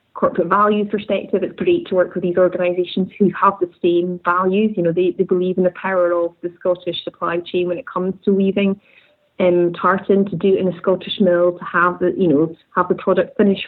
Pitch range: 175-200 Hz